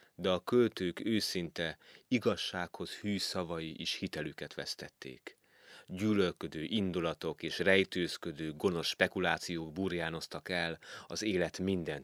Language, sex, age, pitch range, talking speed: Hungarian, male, 30-49, 85-105 Hz, 105 wpm